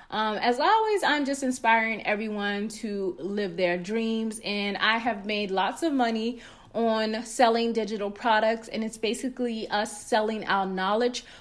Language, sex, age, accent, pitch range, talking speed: English, female, 20-39, American, 210-255 Hz, 155 wpm